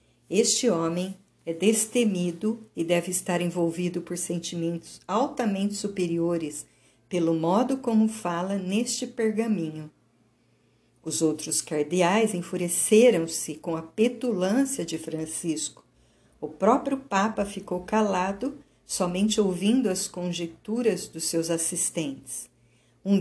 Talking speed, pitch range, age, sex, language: 105 wpm, 165-215 Hz, 50-69, female, Portuguese